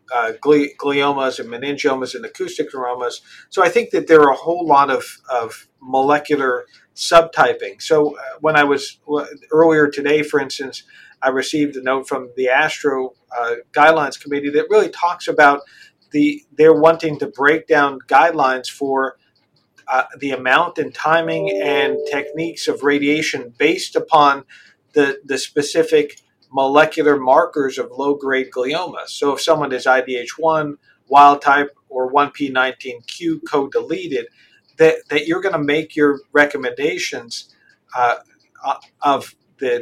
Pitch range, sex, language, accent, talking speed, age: 140-175 Hz, male, English, American, 140 wpm, 50-69